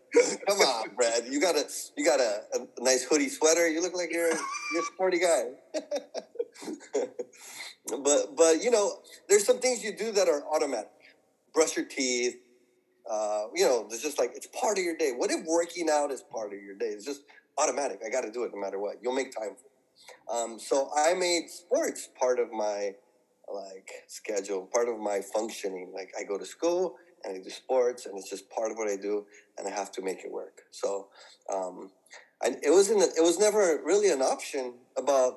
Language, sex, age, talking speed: English, male, 30-49, 210 wpm